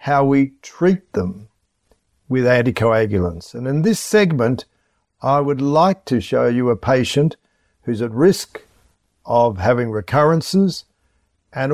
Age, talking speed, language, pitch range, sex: 60-79, 130 wpm, English, 115-155 Hz, male